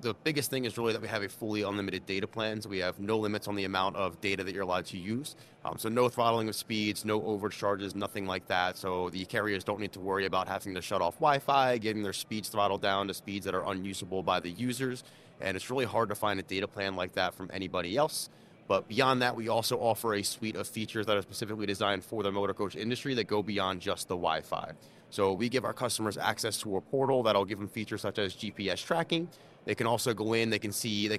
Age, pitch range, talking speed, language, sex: 30-49, 100-120 Hz, 255 wpm, English, male